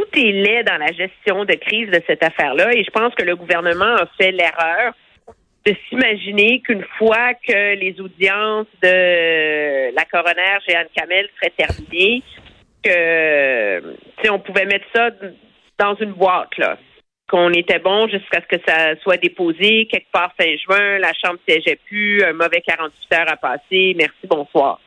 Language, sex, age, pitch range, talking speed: French, female, 50-69, 175-250 Hz, 165 wpm